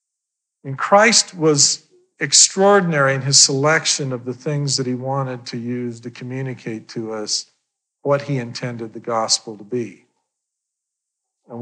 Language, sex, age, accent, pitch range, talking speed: English, male, 50-69, American, 115-140 Hz, 140 wpm